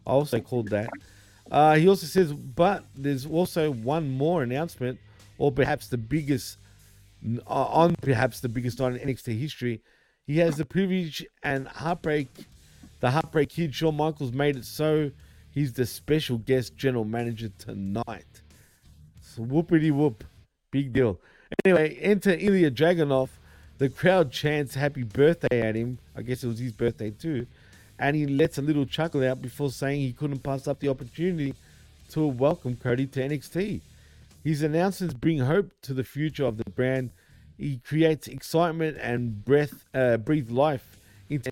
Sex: male